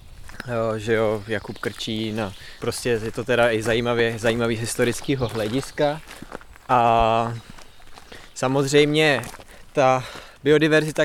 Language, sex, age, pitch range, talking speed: Czech, male, 20-39, 110-130 Hz, 110 wpm